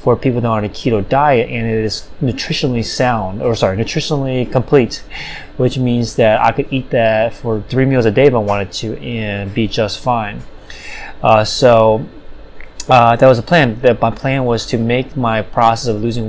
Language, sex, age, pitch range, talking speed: English, male, 20-39, 110-130 Hz, 190 wpm